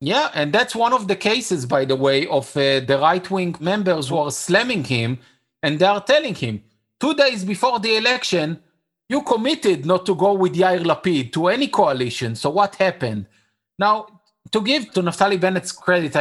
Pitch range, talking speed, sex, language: 145-200 Hz, 185 wpm, male, English